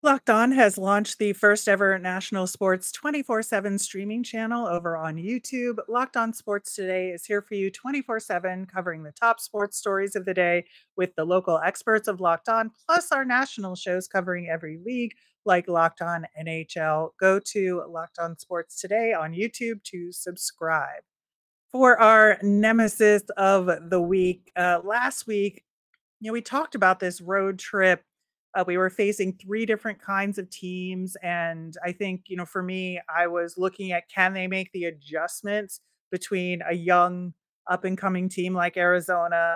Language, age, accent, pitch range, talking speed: English, 30-49, American, 175-210 Hz, 170 wpm